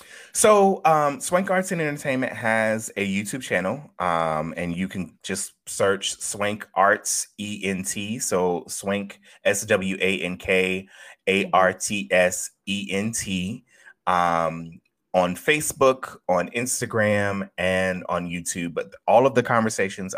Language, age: English, 30-49